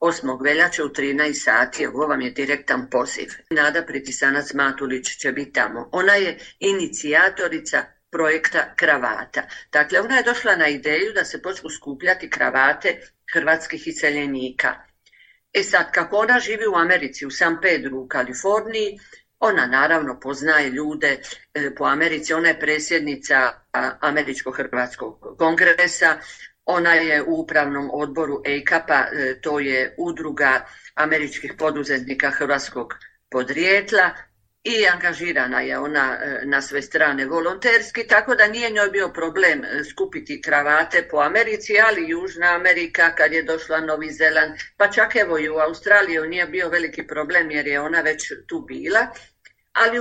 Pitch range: 145-205 Hz